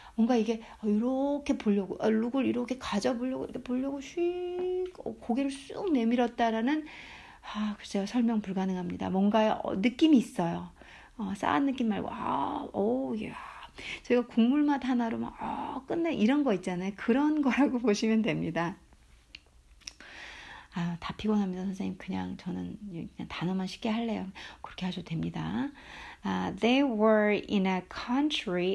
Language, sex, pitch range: Korean, female, 195-270 Hz